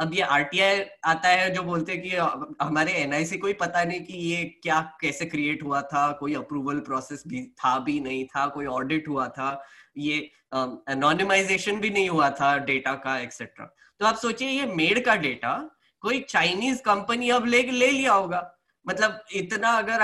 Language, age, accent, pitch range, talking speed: Hindi, 10-29, native, 150-215 Hz, 180 wpm